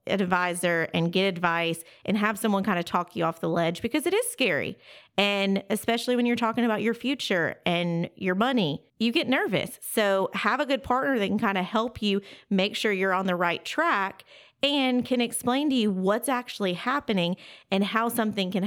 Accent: American